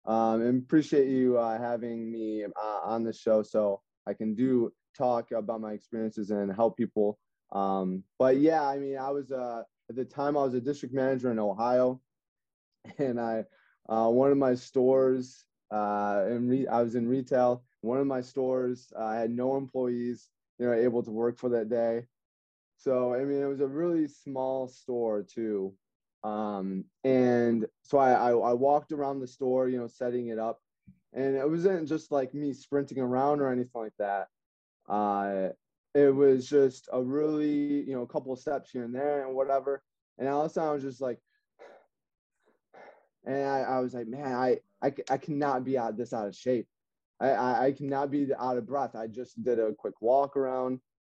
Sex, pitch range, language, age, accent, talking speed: male, 115-135 Hz, English, 20-39, American, 195 wpm